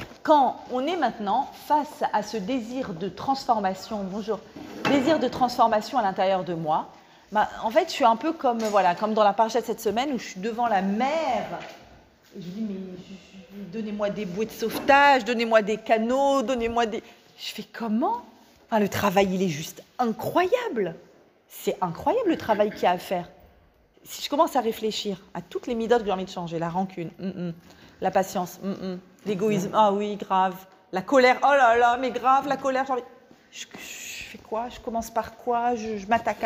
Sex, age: female, 40-59